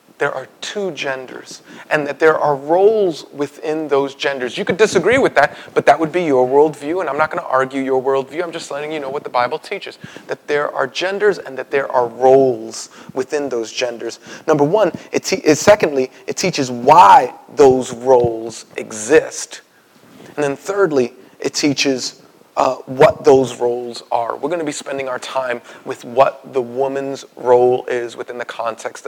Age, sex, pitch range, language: 30-49, male, 130-175 Hz, English